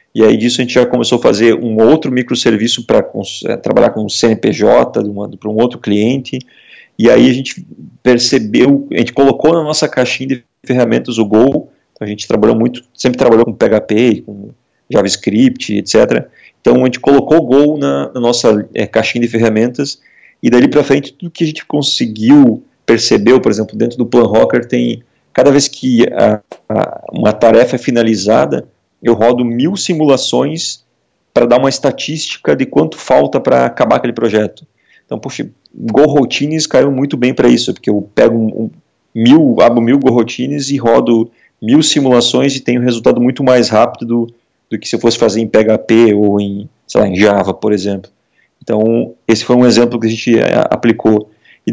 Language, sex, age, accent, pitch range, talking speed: Portuguese, male, 40-59, Brazilian, 110-140 Hz, 180 wpm